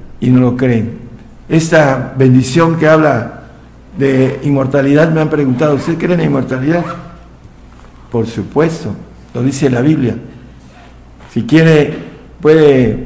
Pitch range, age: 125-150 Hz, 60-79